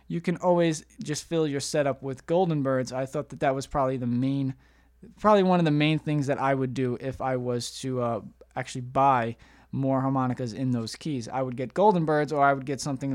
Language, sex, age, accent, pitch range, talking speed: English, male, 20-39, American, 130-160 Hz, 230 wpm